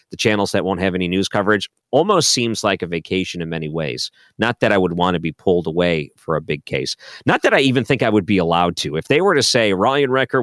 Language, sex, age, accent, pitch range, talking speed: English, male, 40-59, American, 95-125 Hz, 265 wpm